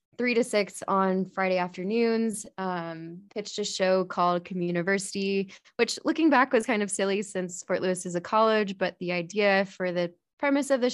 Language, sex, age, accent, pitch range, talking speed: English, female, 10-29, American, 180-210 Hz, 180 wpm